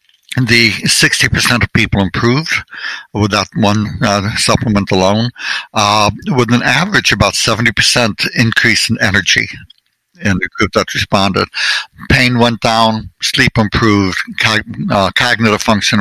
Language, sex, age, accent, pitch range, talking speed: English, male, 60-79, American, 100-120 Hz, 125 wpm